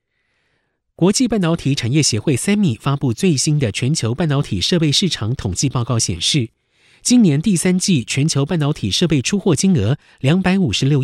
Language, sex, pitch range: Chinese, male, 115-165 Hz